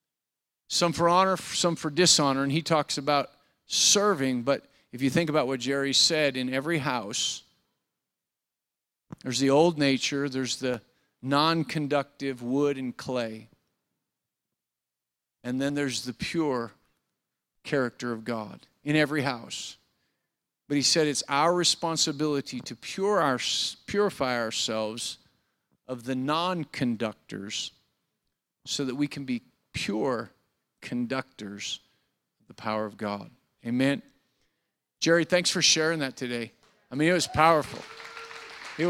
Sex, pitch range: male, 125-165 Hz